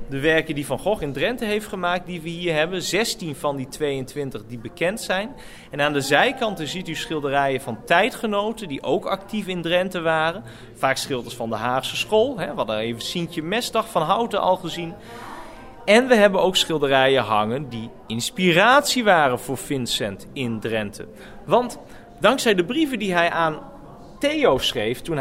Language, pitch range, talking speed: Dutch, 125-185 Hz, 175 wpm